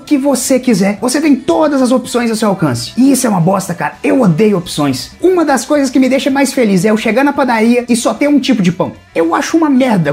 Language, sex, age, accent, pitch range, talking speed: English, male, 30-49, Brazilian, 215-280 Hz, 260 wpm